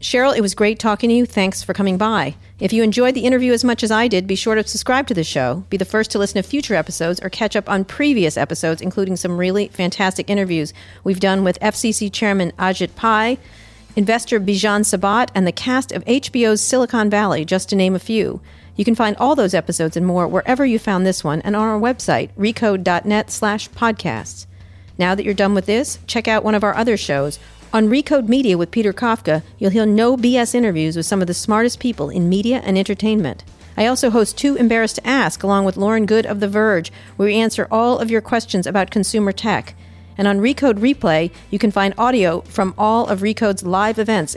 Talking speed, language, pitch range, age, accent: 220 wpm, English, 185-230 Hz, 50-69, American